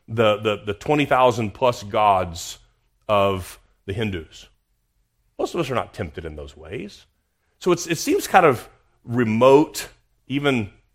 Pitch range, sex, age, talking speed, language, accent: 90-130 Hz, male, 40-59, 135 wpm, English, American